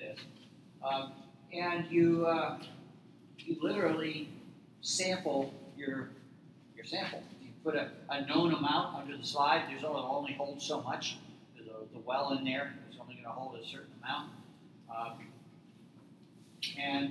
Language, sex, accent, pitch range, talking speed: English, male, American, 125-165 Hz, 140 wpm